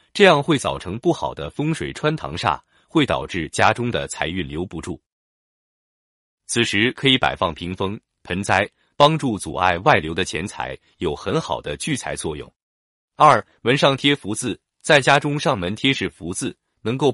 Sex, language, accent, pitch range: male, Chinese, native, 90-145 Hz